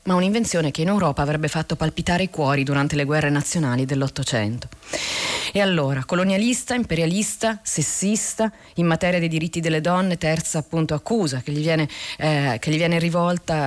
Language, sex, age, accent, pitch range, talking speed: Italian, female, 30-49, native, 150-185 Hz, 165 wpm